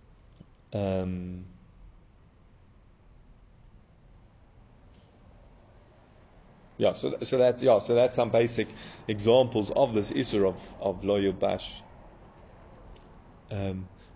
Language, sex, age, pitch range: English, male, 30-49, 105-140 Hz